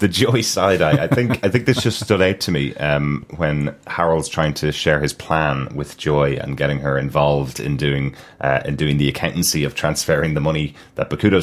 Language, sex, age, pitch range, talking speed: English, male, 30-49, 70-95 Hz, 215 wpm